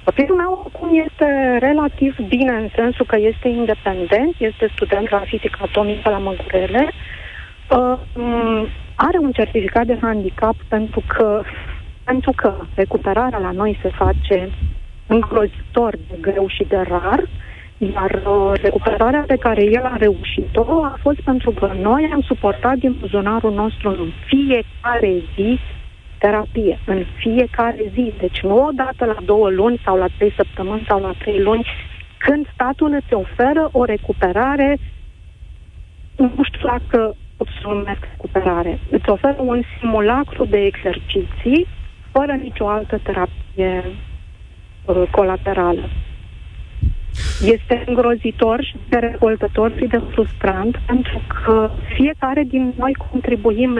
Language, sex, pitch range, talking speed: Romanian, female, 200-255 Hz, 130 wpm